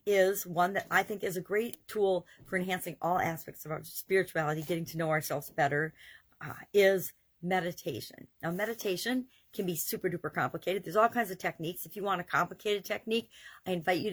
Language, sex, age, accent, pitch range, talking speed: English, female, 50-69, American, 165-205 Hz, 190 wpm